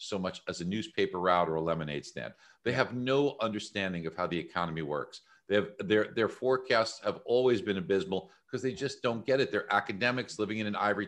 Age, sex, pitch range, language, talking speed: 50-69, male, 100-130 Hz, English, 215 wpm